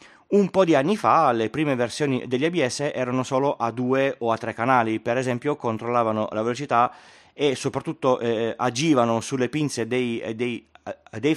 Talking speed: 165 wpm